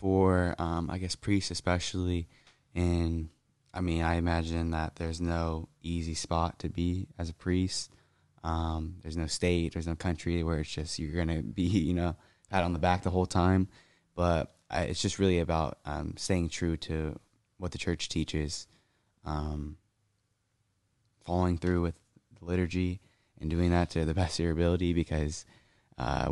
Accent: American